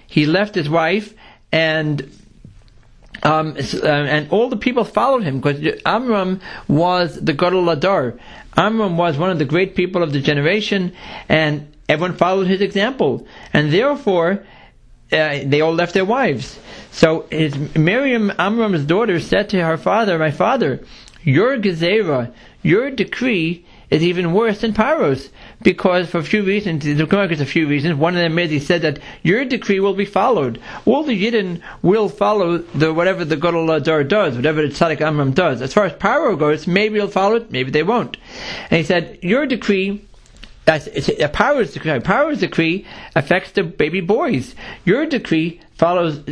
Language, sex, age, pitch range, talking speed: English, male, 60-79, 155-200 Hz, 165 wpm